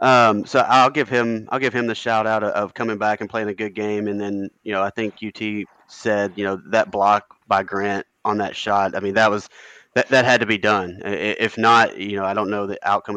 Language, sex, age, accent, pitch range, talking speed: English, male, 20-39, American, 100-110 Hz, 255 wpm